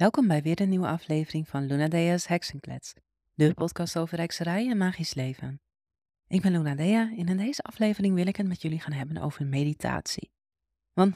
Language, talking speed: Dutch, 185 wpm